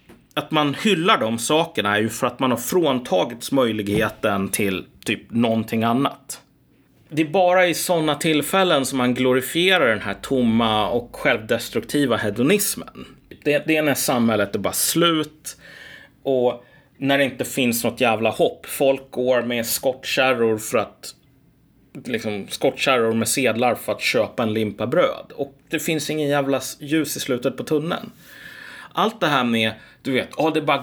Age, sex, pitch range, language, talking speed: 30-49, male, 115-155 Hz, Swedish, 160 wpm